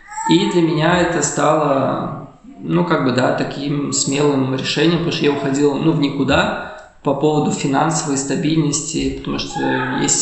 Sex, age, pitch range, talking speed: male, 20-39, 140-165 Hz, 155 wpm